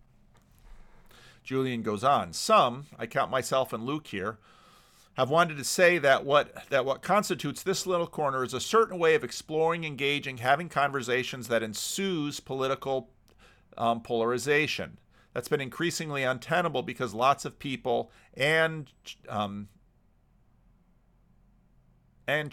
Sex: male